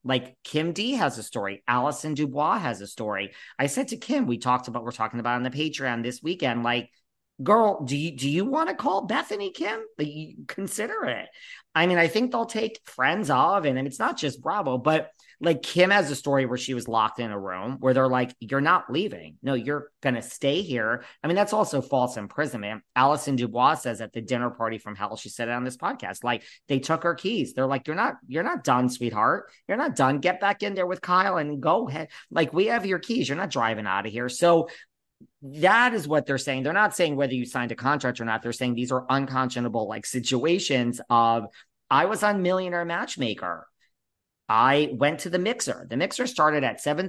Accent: American